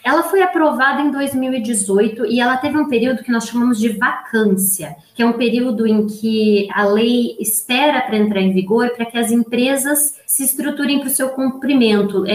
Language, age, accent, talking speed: Portuguese, 20-39, Brazilian, 185 wpm